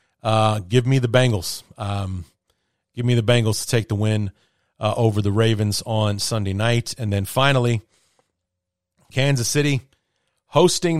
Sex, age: male, 30-49